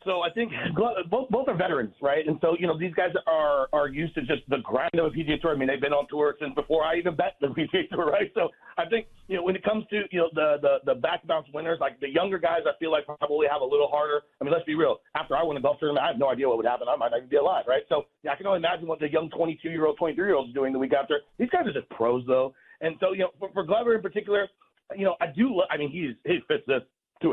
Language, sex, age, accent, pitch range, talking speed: English, male, 40-59, American, 150-190 Hz, 305 wpm